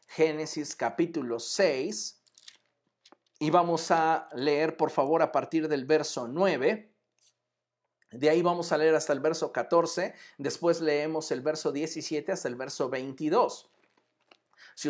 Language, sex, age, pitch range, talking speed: Spanish, male, 50-69, 145-180 Hz, 135 wpm